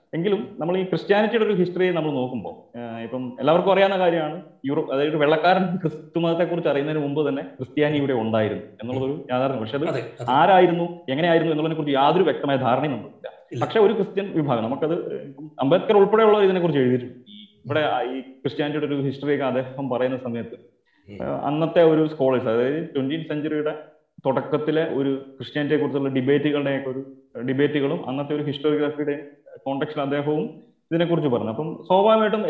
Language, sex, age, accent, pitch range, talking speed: Malayalam, male, 30-49, native, 130-165 Hz, 135 wpm